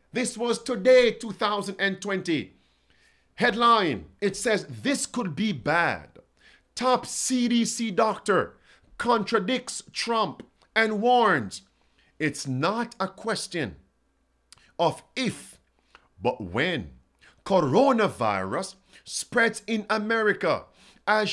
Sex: male